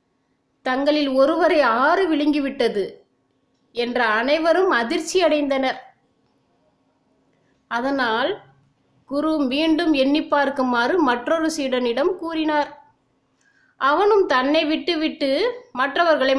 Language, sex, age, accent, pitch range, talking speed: Tamil, female, 20-39, native, 250-315 Hz, 75 wpm